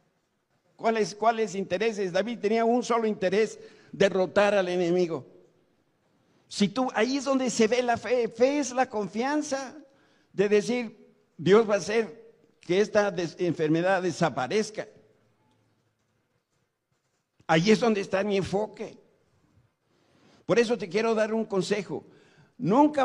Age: 60-79